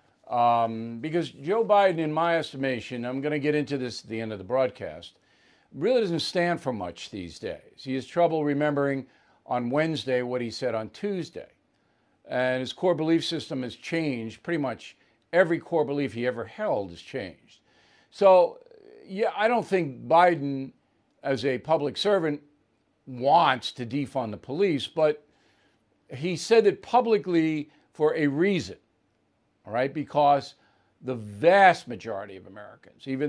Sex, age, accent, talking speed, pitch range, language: male, 50-69, American, 155 wpm, 125-170 Hz, English